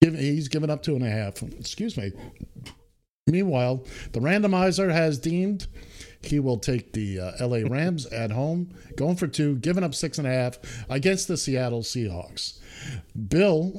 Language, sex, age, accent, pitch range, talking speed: English, male, 50-69, American, 115-160 Hz, 160 wpm